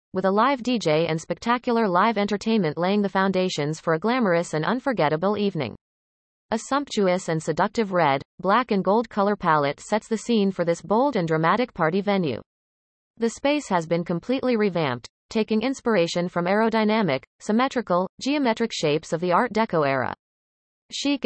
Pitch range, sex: 165-225 Hz, female